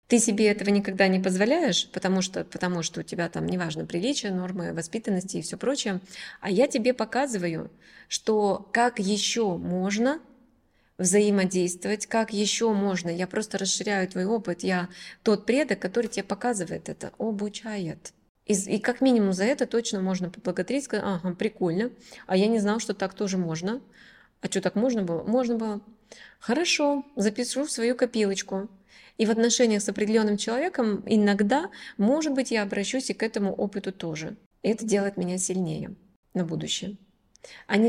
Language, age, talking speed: Russian, 20-39, 160 wpm